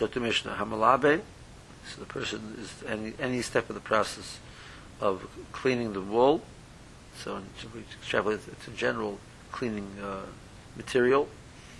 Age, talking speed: 60-79, 120 wpm